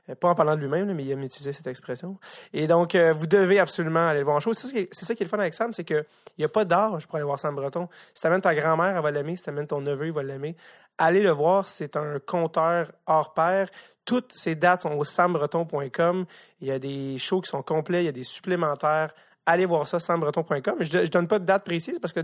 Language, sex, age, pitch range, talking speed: French, male, 30-49, 145-185 Hz, 265 wpm